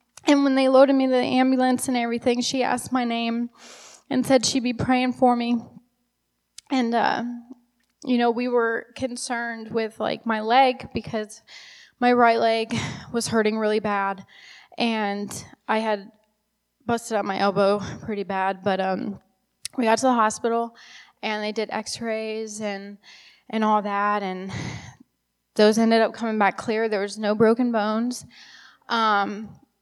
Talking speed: 155 wpm